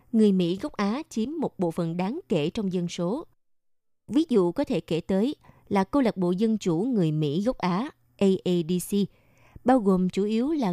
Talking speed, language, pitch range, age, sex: 195 wpm, Vietnamese, 175-220 Hz, 20-39, female